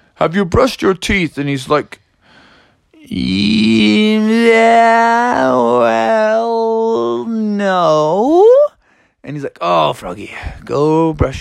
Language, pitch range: English, 125-200 Hz